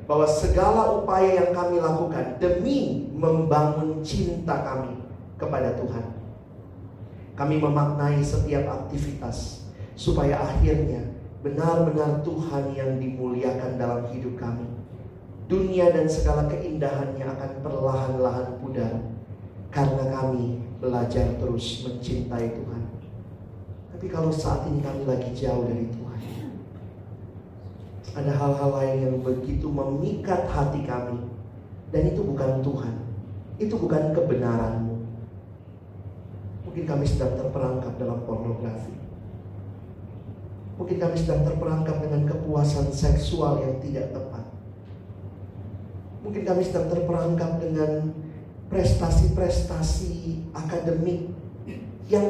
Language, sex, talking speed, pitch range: Indonesian, male, 100 wpm, 110-155 Hz